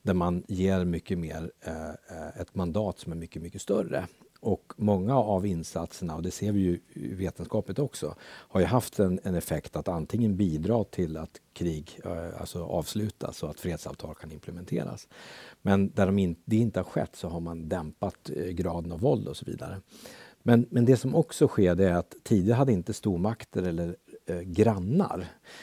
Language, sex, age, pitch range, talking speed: Swedish, male, 60-79, 85-100 Hz, 185 wpm